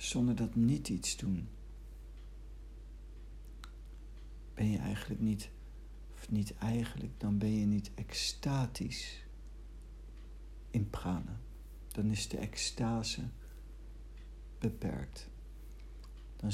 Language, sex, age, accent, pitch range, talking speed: Dutch, male, 60-79, Dutch, 75-115 Hz, 90 wpm